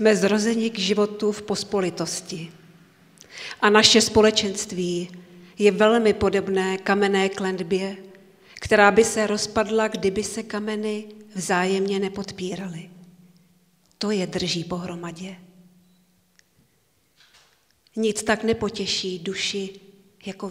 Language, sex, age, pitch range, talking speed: Czech, female, 40-59, 185-210 Hz, 95 wpm